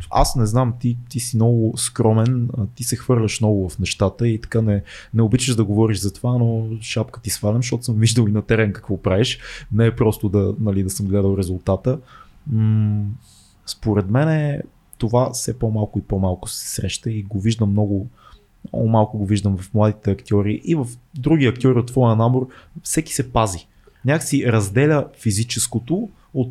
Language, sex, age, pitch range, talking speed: Bulgarian, male, 20-39, 110-140 Hz, 180 wpm